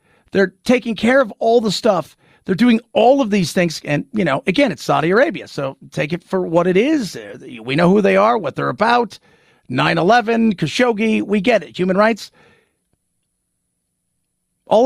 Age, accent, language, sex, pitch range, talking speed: 40-59, American, English, male, 150-215 Hz, 175 wpm